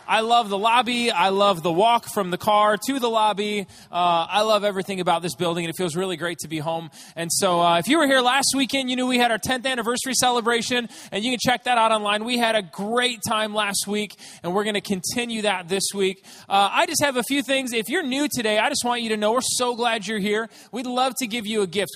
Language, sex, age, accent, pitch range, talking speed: English, male, 20-39, American, 190-240 Hz, 265 wpm